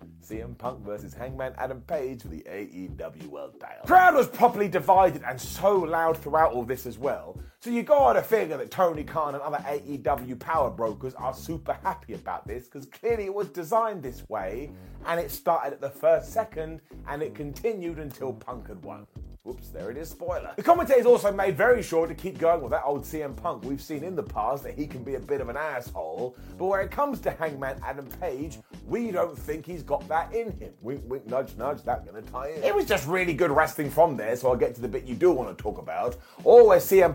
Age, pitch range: 30-49, 140-210 Hz